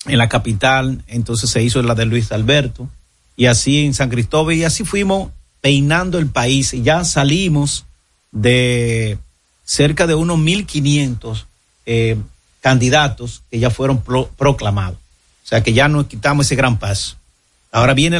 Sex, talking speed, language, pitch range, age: male, 155 wpm, Spanish, 115-145 Hz, 40-59